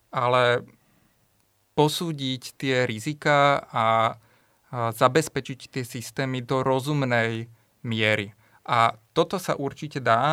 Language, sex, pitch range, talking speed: Slovak, male, 120-140 Hz, 95 wpm